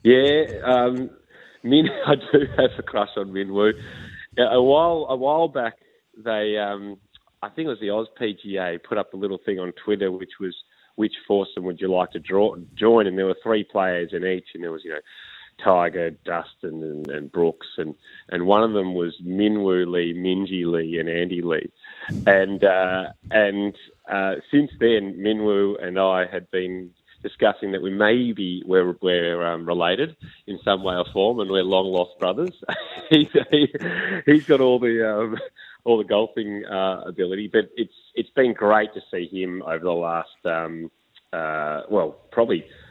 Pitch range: 90-105 Hz